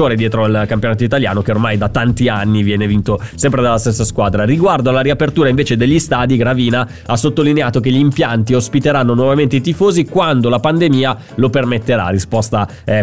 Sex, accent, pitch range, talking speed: male, native, 115-135 Hz, 175 wpm